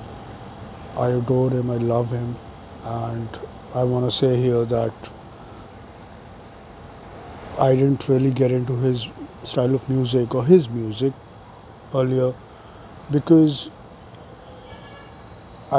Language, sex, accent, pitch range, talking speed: English, male, Indian, 115-140 Hz, 105 wpm